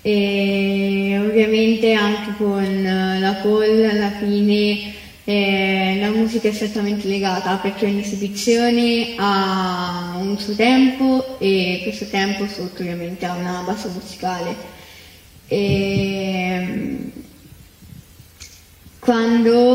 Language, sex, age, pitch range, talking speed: Italian, female, 10-29, 190-220 Hz, 95 wpm